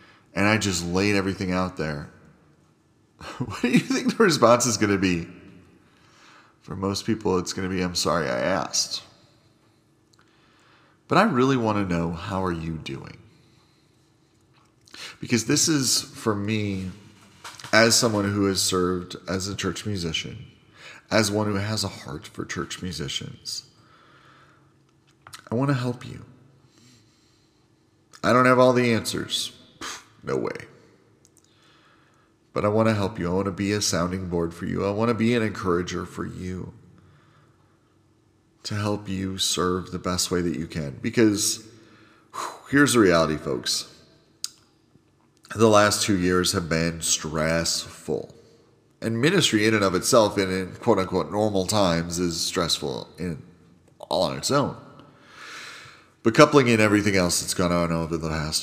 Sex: male